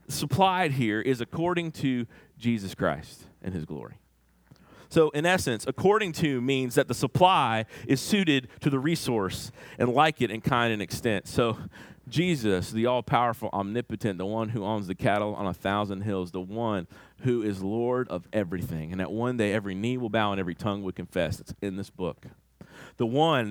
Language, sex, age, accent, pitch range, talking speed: English, male, 40-59, American, 95-135 Hz, 185 wpm